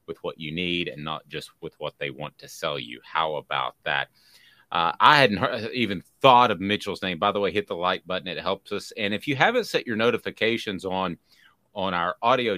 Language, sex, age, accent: English, male, 30-49, American